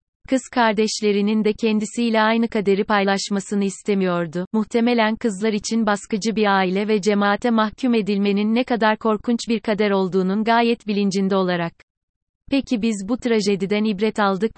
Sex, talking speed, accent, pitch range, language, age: female, 135 wpm, native, 200-225 Hz, Turkish, 30-49